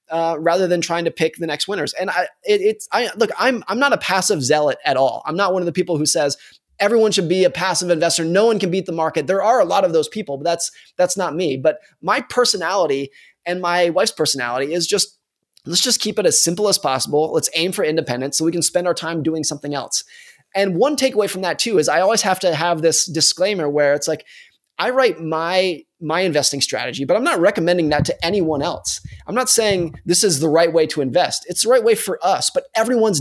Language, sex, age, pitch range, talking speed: English, male, 20-39, 155-200 Hz, 240 wpm